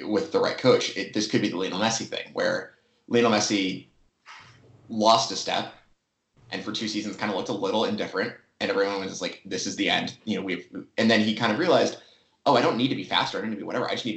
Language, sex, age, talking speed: English, male, 30-49, 265 wpm